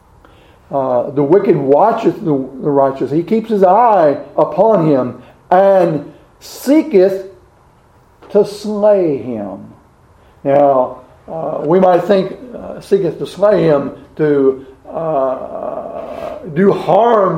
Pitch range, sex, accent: 145-195 Hz, male, American